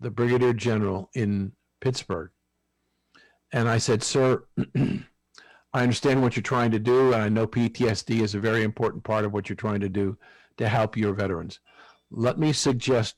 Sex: male